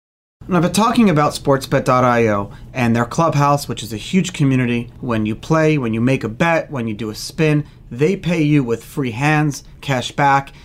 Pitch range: 125-175 Hz